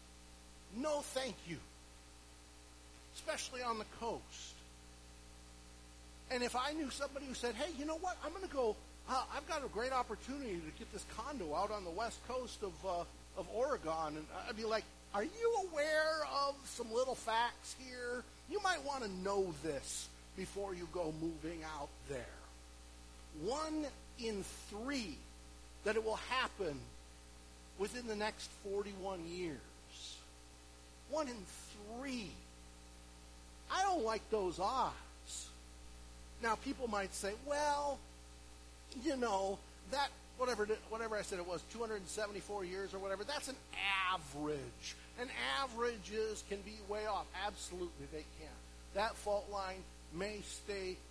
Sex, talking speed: male, 140 wpm